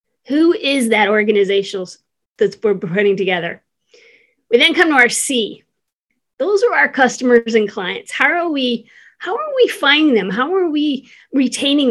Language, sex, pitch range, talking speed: English, female, 205-280 Hz, 150 wpm